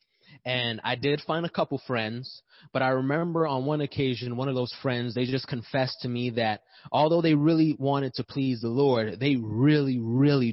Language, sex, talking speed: English, male, 195 wpm